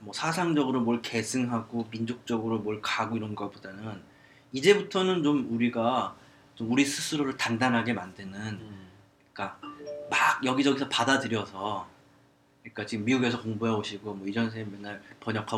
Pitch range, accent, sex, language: 110-145 Hz, native, male, Korean